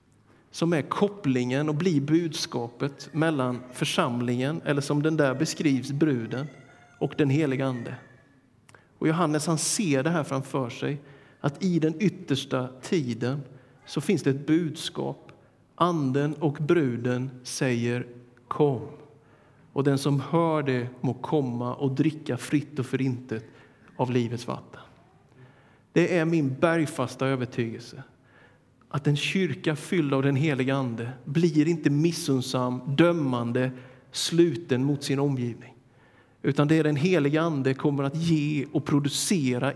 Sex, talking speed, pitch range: male, 135 wpm, 125-155 Hz